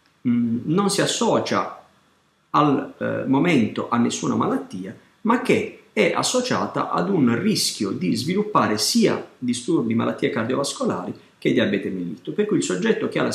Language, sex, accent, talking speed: Italian, male, native, 145 wpm